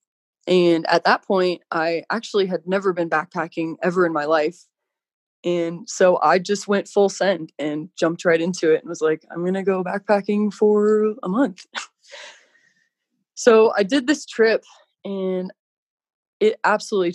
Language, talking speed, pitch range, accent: English, 160 wpm, 170-205 Hz, American